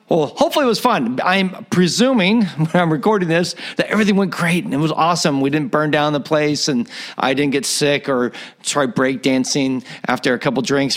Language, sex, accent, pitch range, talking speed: English, male, American, 145-205 Hz, 210 wpm